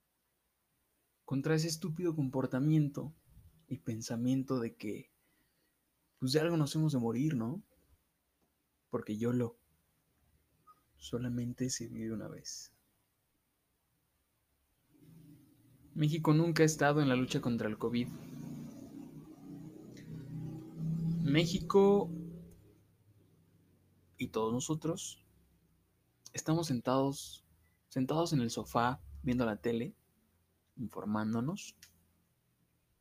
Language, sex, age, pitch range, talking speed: Spanish, male, 20-39, 105-150 Hz, 85 wpm